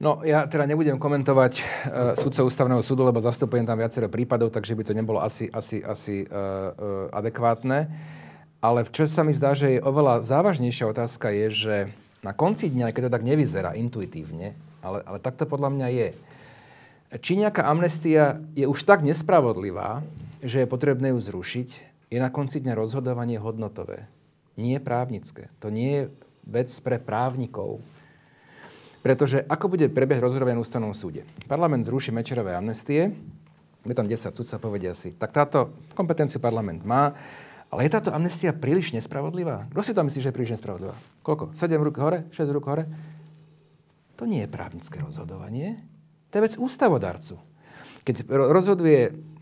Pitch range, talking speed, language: 115-150 Hz, 165 wpm, Slovak